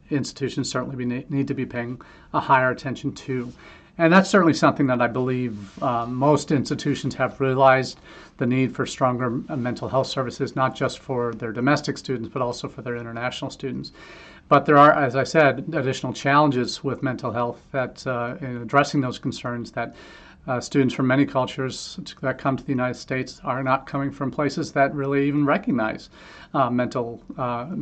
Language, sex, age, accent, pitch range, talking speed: English, male, 40-59, American, 130-145 Hz, 180 wpm